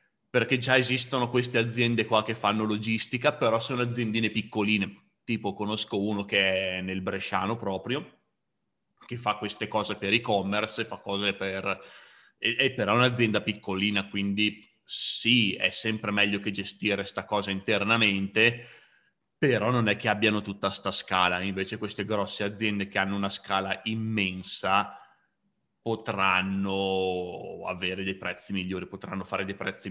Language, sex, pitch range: Italian, male, 95-110 Hz